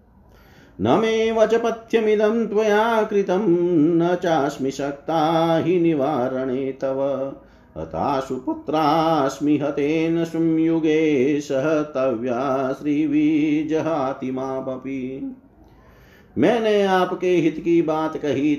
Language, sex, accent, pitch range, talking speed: Hindi, male, native, 140-165 Hz, 75 wpm